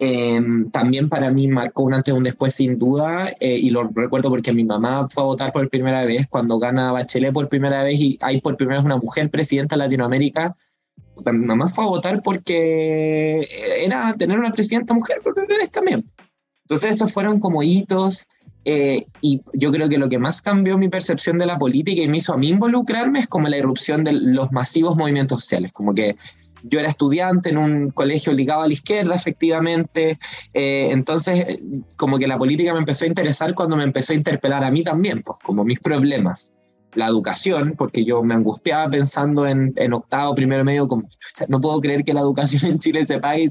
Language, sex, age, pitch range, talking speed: Spanish, male, 20-39, 130-160 Hz, 205 wpm